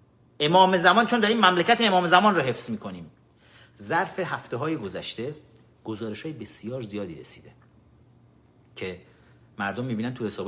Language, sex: Persian, male